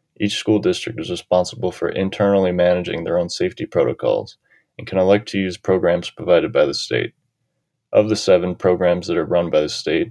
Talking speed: 190 wpm